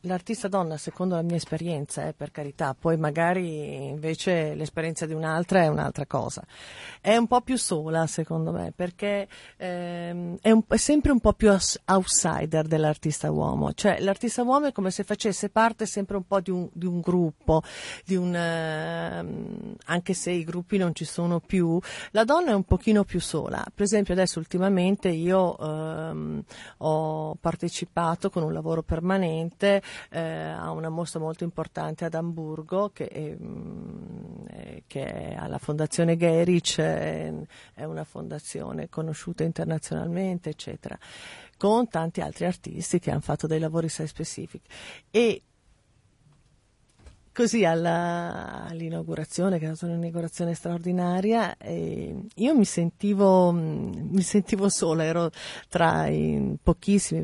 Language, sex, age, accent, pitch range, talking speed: Italian, female, 50-69, native, 160-190 Hz, 140 wpm